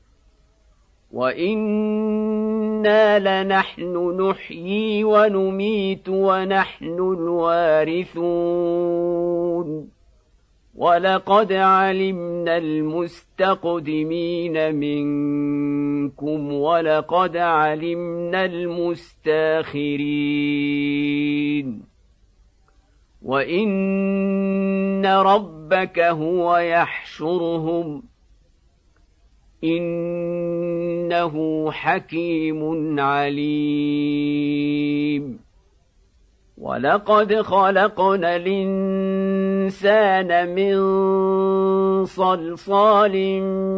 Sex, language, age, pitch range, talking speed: male, Arabic, 50-69, 155-190 Hz, 35 wpm